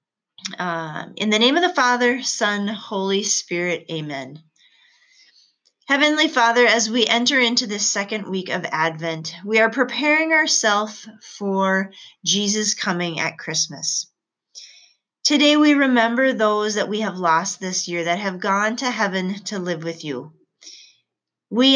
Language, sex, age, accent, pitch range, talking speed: English, female, 30-49, American, 170-230 Hz, 140 wpm